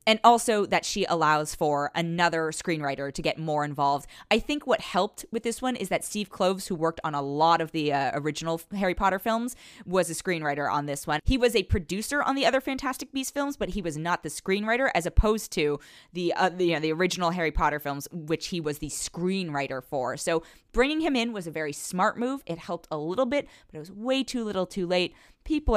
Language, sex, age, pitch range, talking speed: English, female, 20-39, 155-215 Hz, 225 wpm